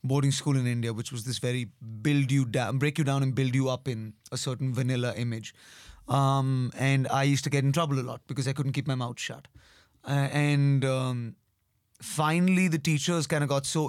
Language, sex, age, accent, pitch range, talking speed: English, male, 20-39, Indian, 125-145 Hz, 215 wpm